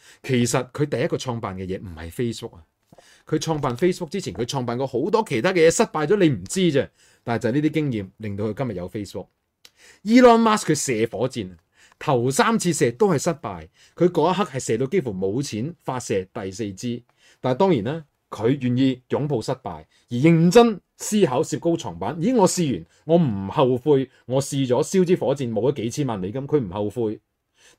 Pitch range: 110-165 Hz